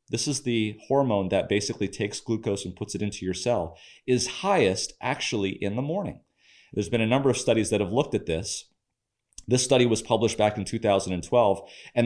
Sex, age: male, 30-49